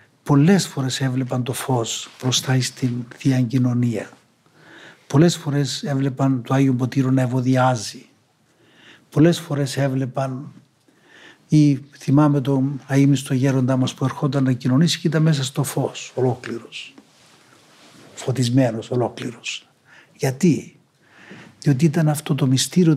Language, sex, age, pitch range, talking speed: Greek, male, 60-79, 130-155 Hz, 115 wpm